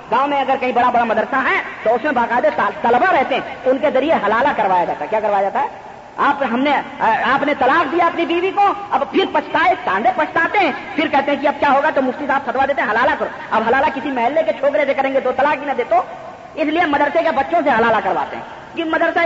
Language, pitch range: Urdu, 250-325 Hz